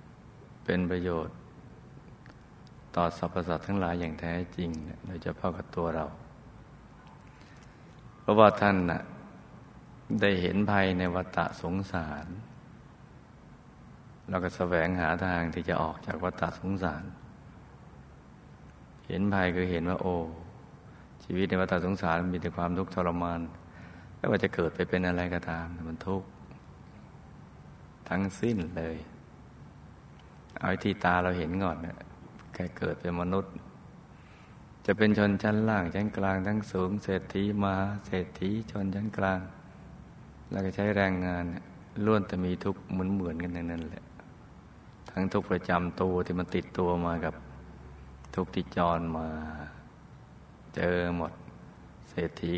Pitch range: 85-95 Hz